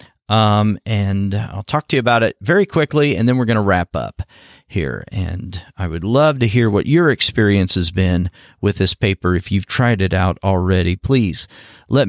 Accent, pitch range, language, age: American, 100-130 Hz, English, 40-59